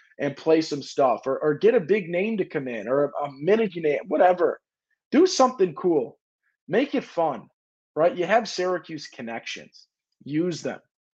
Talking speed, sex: 170 wpm, male